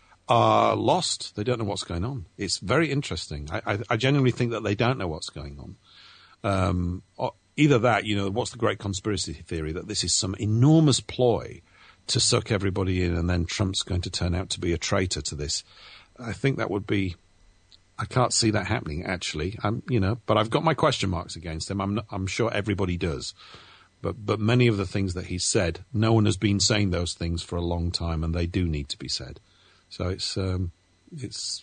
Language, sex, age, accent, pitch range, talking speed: English, male, 50-69, British, 90-110 Hz, 220 wpm